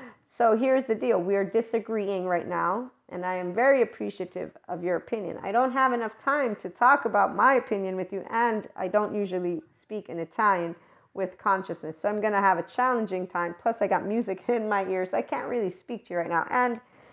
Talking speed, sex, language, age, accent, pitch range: 215 wpm, female, English, 40-59, American, 190-240 Hz